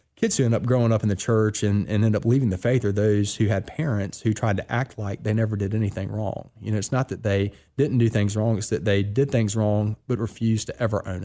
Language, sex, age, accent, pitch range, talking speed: English, male, 30-49, American, 100-115 Hz, 275 wpm